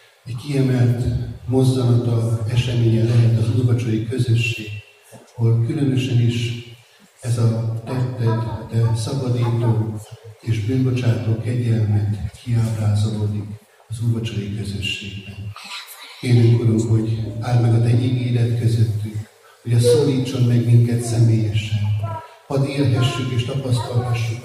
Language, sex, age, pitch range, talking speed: Hungarian, male, 60-79, 110-125 Hz, 105 wpm